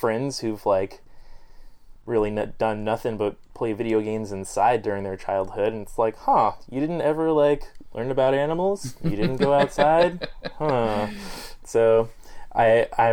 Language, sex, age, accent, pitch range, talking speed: English, male, 20-39, American, 100-120 Hz, 145 wpm